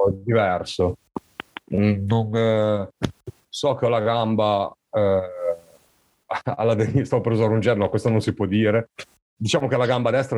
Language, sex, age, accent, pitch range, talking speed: Italian, male, 40-59, native, 95-120 Hz, 135 wpm